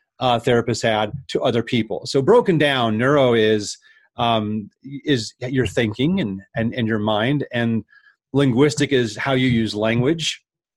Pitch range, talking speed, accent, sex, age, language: 110-130 Hz, 150 wpm, American, male, 30-49, English